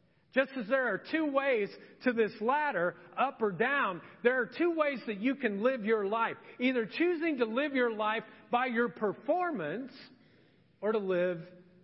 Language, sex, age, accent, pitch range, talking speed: English, male, 40-59, American, 165-220 Hz, 170 wpm